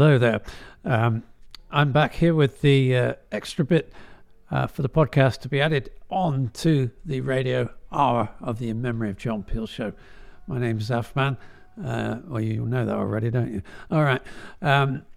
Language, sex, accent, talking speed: English, male, British, 180 wpm